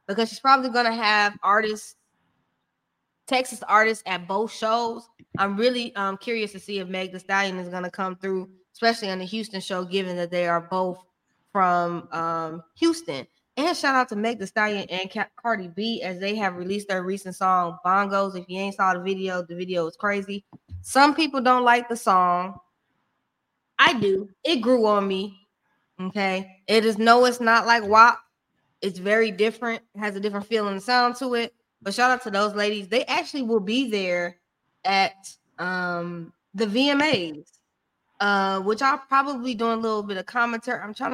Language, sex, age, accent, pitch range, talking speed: English, female, 20-39, American, 190-230 Hz, 185 wpm